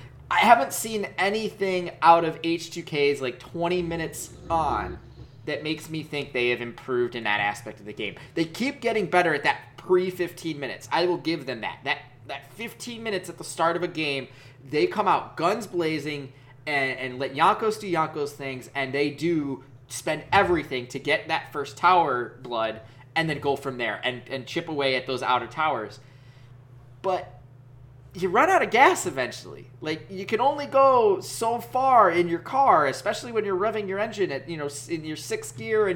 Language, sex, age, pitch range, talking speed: English, male, 20-39, 125-175 Hz, 190 wpm